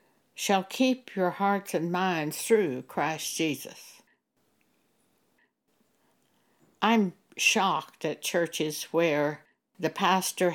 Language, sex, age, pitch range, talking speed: English, female, 60-79, 170-230 Hz, 90 wpm